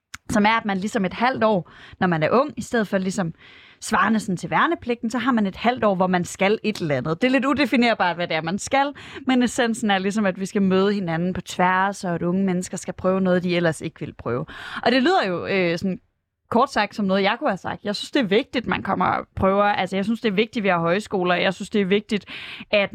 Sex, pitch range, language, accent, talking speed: female, 190-245 Hz, Danish, native, 265 wpm